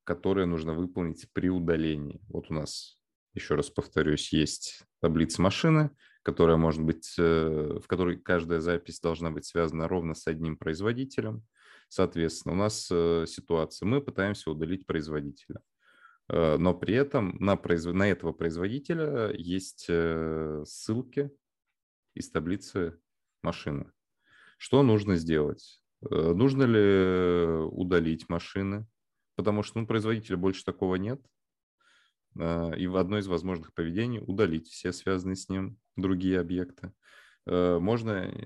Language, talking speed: Russian, 120 wpm